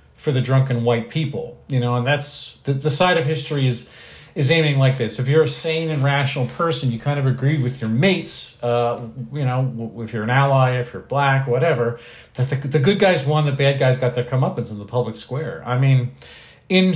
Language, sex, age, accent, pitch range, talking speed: English, male, 40-59, American, 120-150 Hz, 225 wpm